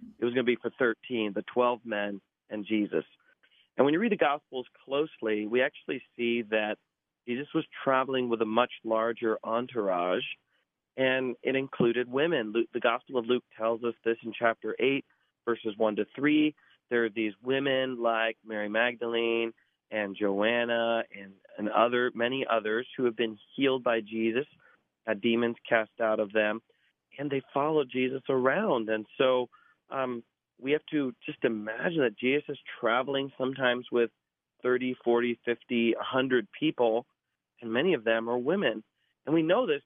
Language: English